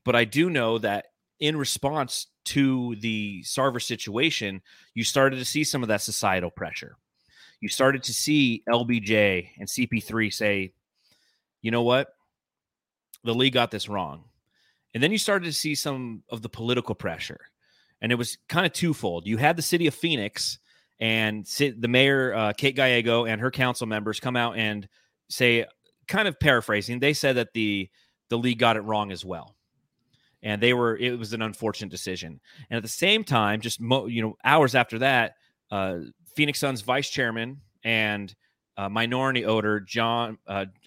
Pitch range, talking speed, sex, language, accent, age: 110-135 Hz, 170 wpm, male, English, American, 30-49